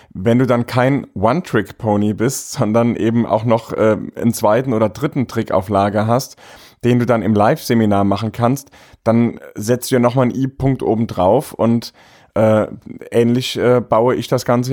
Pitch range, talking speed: 110-135 Hz, 170 wpm